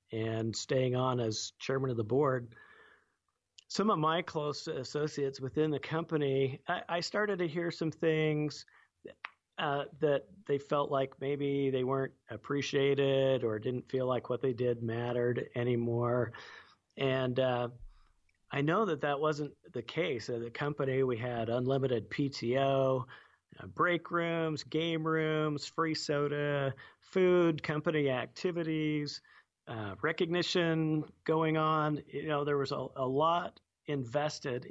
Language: English